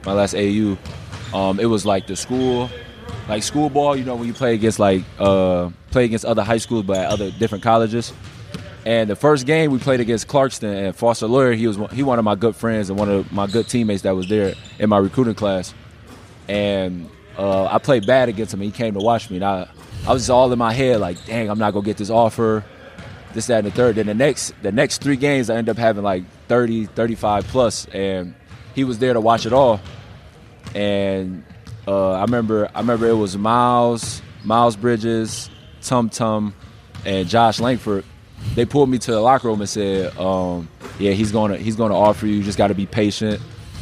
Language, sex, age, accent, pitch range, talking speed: English, male, 20-39, American, 100-115 Hz, 220 wpm